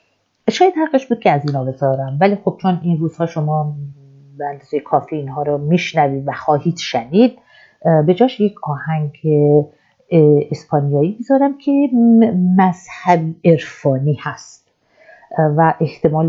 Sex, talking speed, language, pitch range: female, 120 wpm, Persian, 150-195 Hz